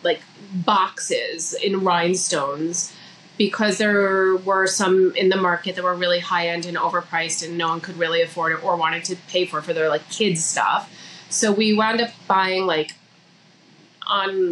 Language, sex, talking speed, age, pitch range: English, female, 165 wpm, 30-49, 175-215 Hz